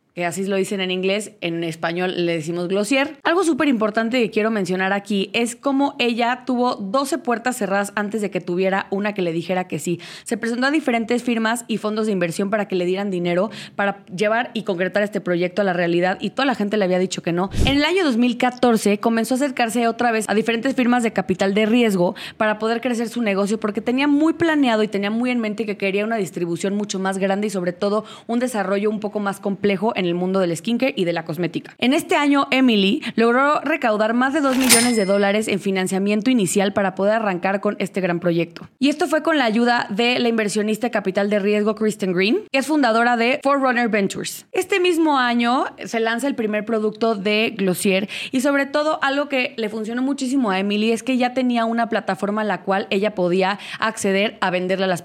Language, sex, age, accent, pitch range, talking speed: Spanish, female, 20-39, Mexican, 195-245 Hz, 220 wpm